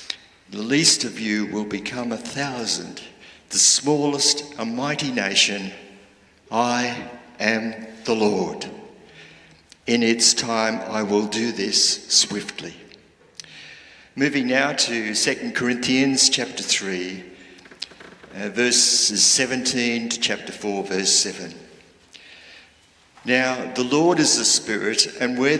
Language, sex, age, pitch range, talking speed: English, male, 60-79, 110-135 Hz, 110 wpm